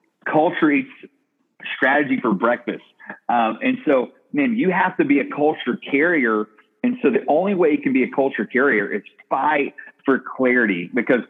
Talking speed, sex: 170 wpm, male